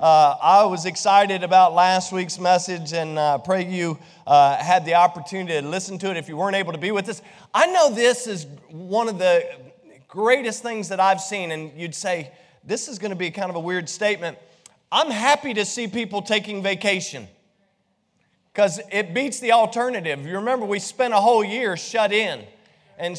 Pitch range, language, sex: 175-210 Hz, English, male